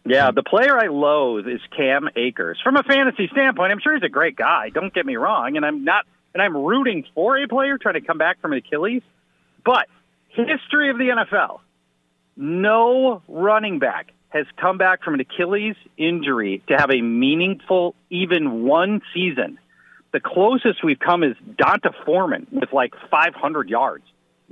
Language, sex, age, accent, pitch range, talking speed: English, male, 40-59, American, 145-220 Hz, 175 wpm